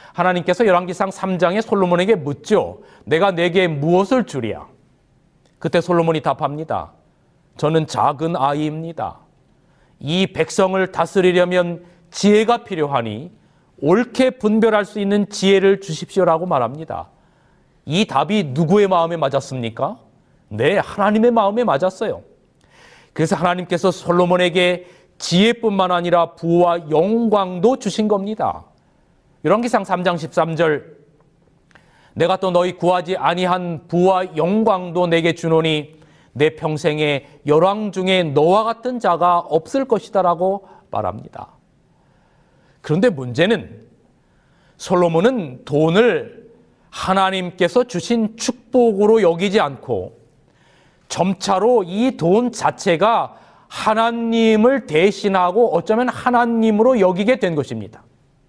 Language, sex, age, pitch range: Korean, male, 40-59, 160-210 Hz